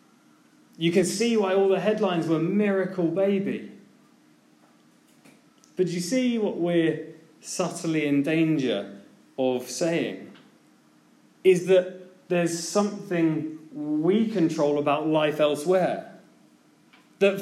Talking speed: 105 wpm